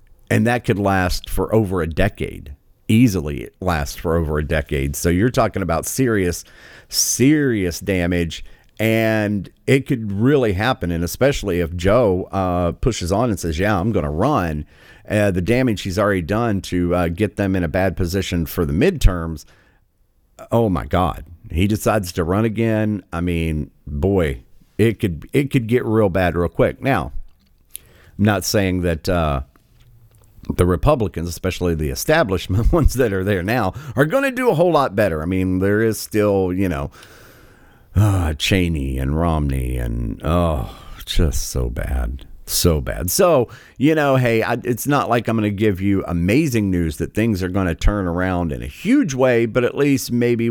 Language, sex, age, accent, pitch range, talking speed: English, male, 50-69, American, 85-110 Hz, 175 wpm